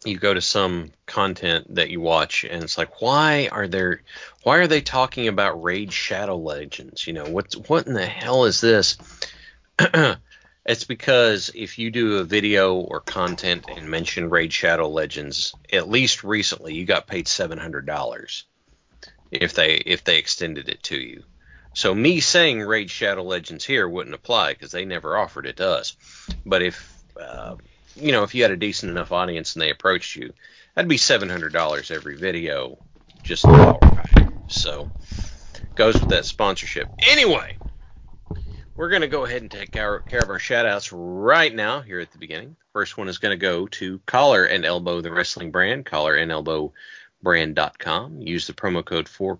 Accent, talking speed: American, 180 wpm